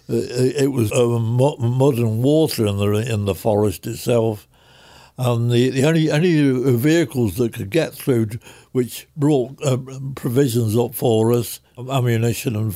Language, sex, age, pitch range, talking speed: English, male, 60-79, 110-140 Hz, 145 wpm